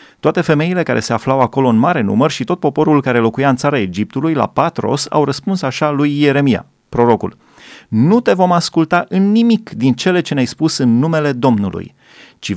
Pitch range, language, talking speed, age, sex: 115-150 Hz, Romanian, 190 wpm, 30-49, male